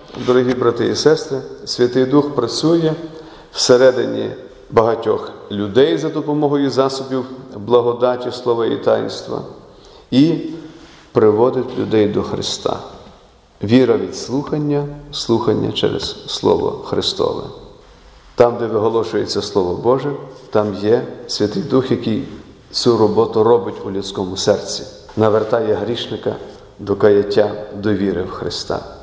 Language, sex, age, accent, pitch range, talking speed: Ukrainian, male, 40-59, native, 115-145 Hz, 110 wpm